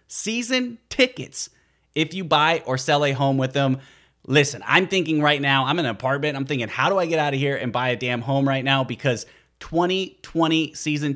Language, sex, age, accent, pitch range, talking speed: English, male, 30-49, American, 130-170 Hz, 210 wpm